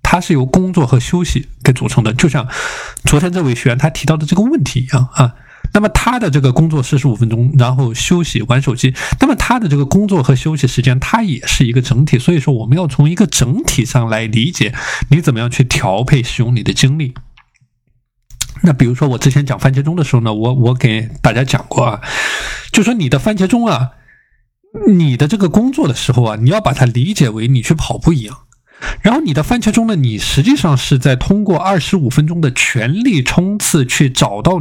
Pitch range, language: 130-165 Hz, Chinese